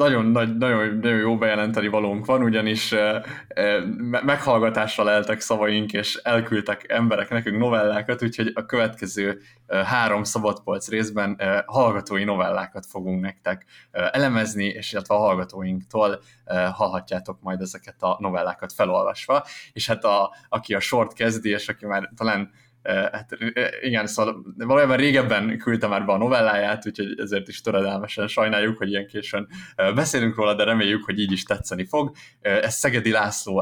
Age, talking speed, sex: 20-39, 140 wpm, male